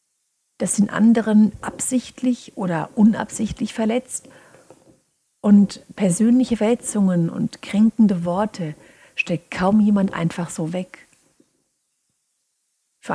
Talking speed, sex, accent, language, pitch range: 90 wpm, female, German, German, 170-220 Hz